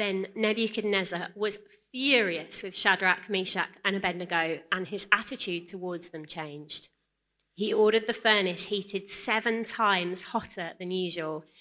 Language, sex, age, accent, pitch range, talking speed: English, female, 30-49, British, 175-220 Hz, 130 wpm